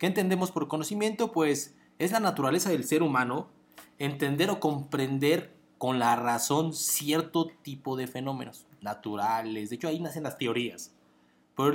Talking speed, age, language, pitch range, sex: 150 wpm, 30-49, Spanish, 125-160 Hz, male